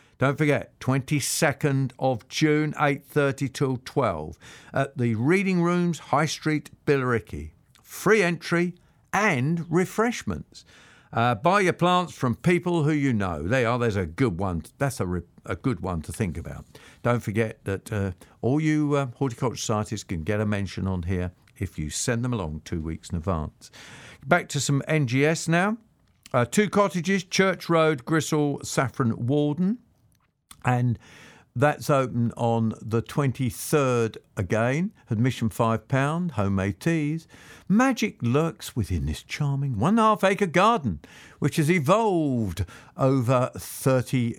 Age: 50-69